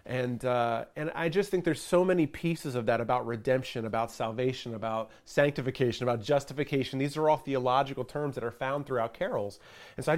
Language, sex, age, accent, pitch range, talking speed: English, male, 30-49, American, 120-160 Hz, 195 wpm